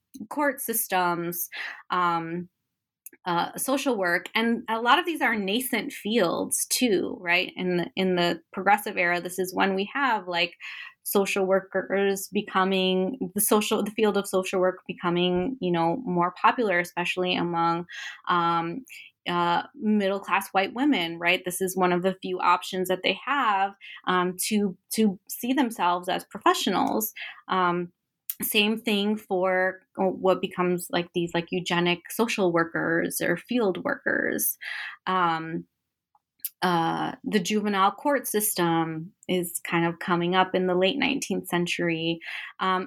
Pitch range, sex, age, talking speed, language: 175-210 Hz, female, 20-39, 140 wpm, English